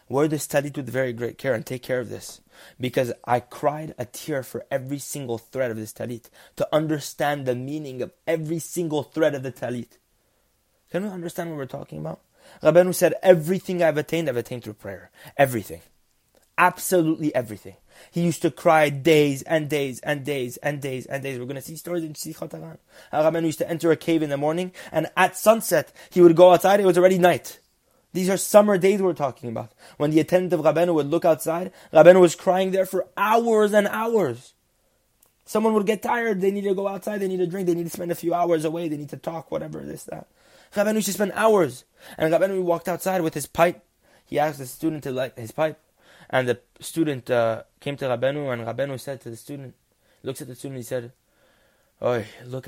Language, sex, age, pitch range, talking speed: English, male, 20-39, 130-175 Hz, 210 wpm